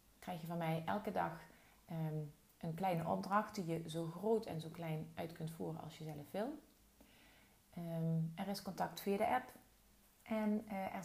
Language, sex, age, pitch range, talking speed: Dutch, female, 30-49, 160-205 Hz, 170 wpm